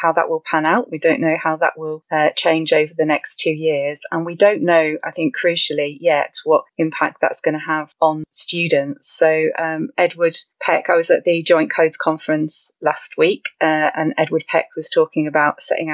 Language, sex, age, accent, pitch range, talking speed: English, female, 30-49, British, 155-210 Hz, 205 wpm